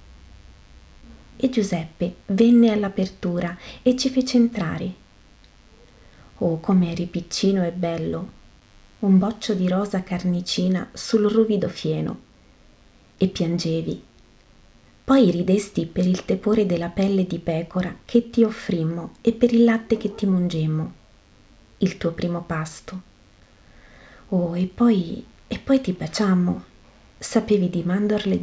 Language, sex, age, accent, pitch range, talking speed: Italian, female, 30-49, native, 165-210 Hz, 120 wpm